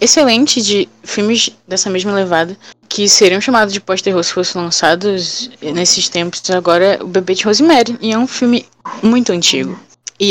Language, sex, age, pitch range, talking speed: Portuguese, female, 10-29, 175-215 Hz, 170 wpm